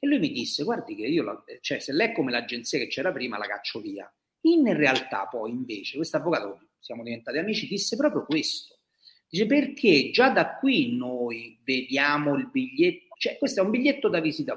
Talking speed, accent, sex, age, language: 200 wpm, native, male, 40-59, Italian